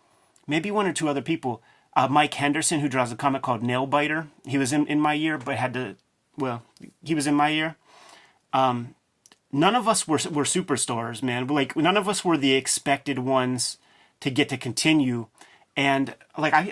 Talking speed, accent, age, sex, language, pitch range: 190 wpm, American, 30-49, male, English, 125-150 Hz